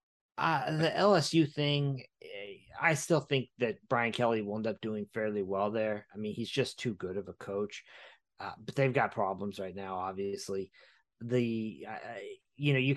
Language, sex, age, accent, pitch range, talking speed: English, male, 30-49, American, 105-125 Hz, 180 wpm